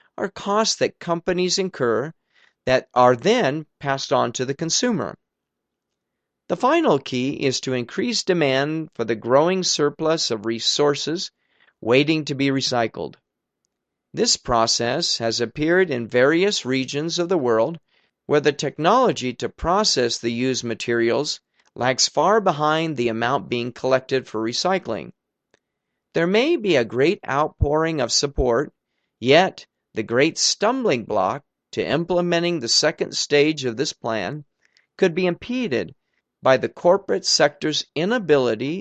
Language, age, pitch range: Persian, 40-59, 125-170 Hz